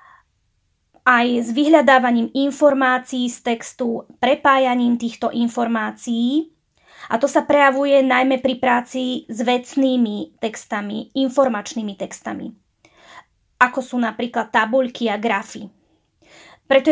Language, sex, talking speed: Slovak, female, 100 wpm